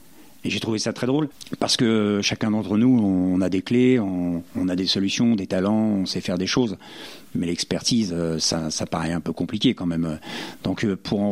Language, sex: French, male